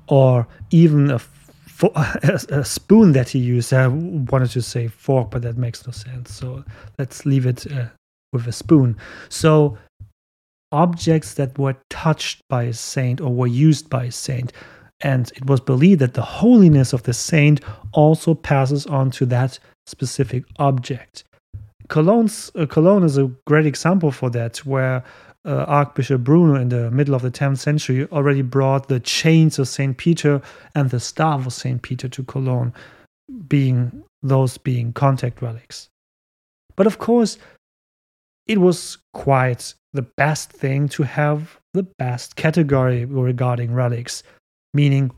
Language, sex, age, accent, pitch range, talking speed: English, male, 30-49, German, 125-150 Hz, 155 wpm